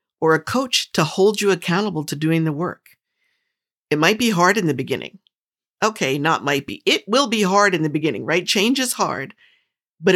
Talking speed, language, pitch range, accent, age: 200 wpm, English, 155-210 Hz, American, 50-69